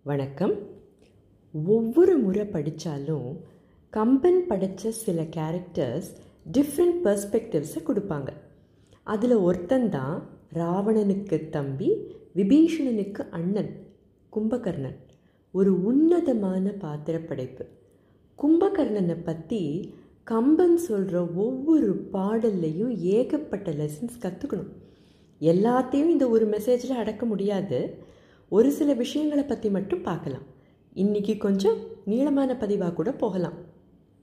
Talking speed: 85 wpm